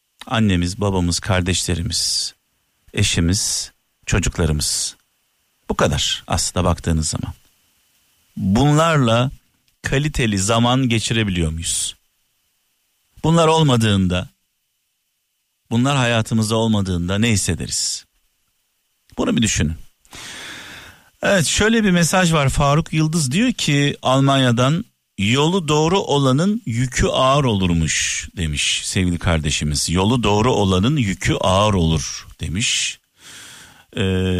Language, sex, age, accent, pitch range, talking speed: Turkish, male, 50-69, native, 90-135 Hz, 90 wpm